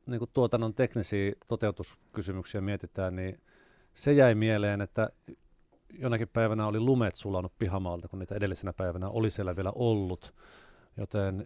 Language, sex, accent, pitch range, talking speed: Finnish, male, native, 95-115 Hz, 135 wpm